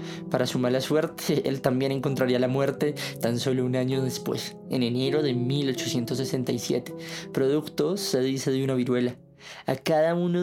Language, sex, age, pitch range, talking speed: Spanish, male, 20-39, 125-155 Hz, 155 wpm